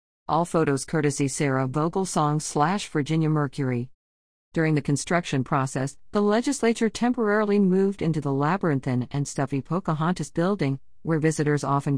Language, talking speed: English, 130 wpm